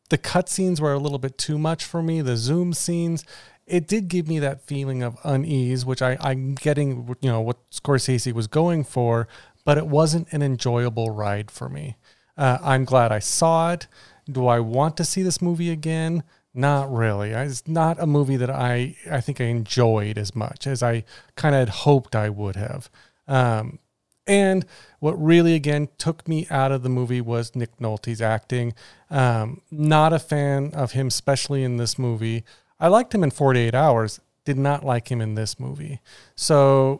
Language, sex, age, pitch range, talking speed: English, male, 40-59, 125-160 Hz, 190 wpm